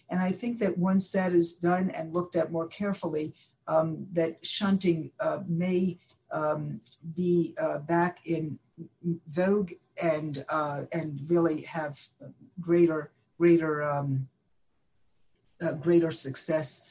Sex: female